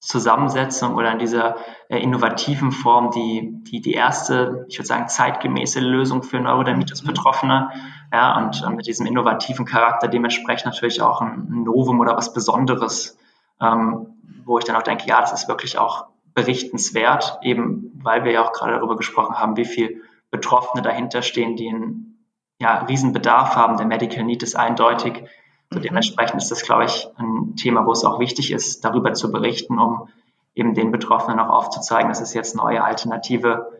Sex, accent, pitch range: male, German, 115-130 Hz